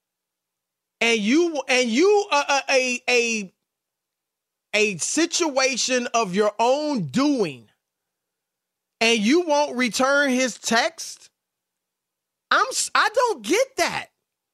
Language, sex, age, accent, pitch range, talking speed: English, male, 30-49, American, 190-280 Hz, 105 wpm